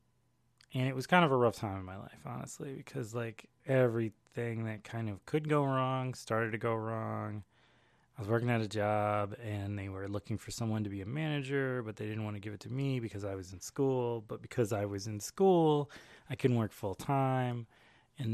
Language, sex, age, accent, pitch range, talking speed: English, male, 20-39, American, 105-125 Hz, 215 wpm